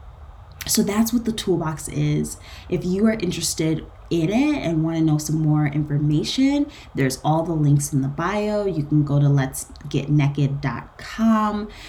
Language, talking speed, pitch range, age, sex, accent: English, 155 wpm, 130-165 Hz, 20-39, female, American